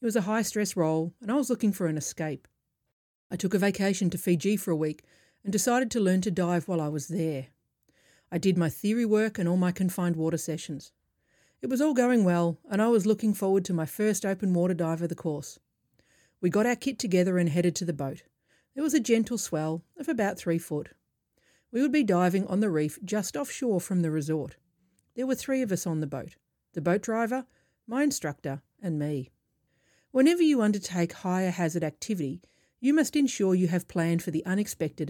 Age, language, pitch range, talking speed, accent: 40-59, English, 165-215 Hz, 210 wpm, Australian